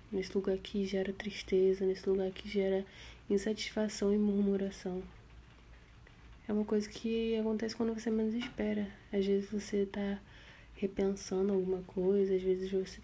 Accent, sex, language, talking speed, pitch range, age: Brazilian, female, Portuguese, 145 wpm, 190-210 Hz, 10-29